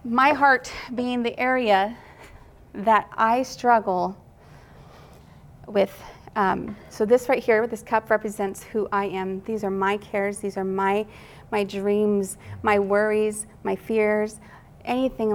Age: 30-49